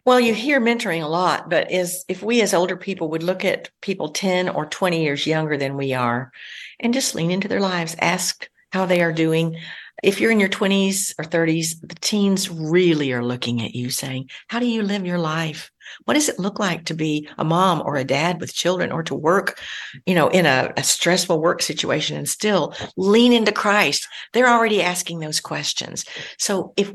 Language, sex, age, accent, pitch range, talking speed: English, female, 60-79, American, 165-220 Hz, 210 wpm